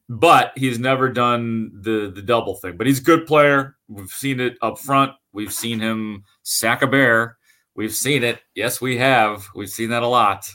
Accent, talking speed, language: American, 200 wpm, English